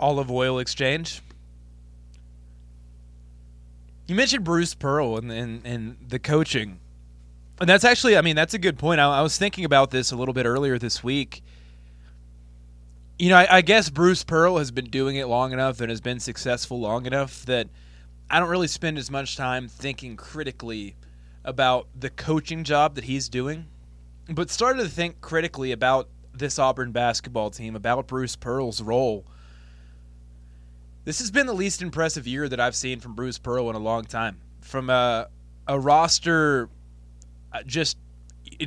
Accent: American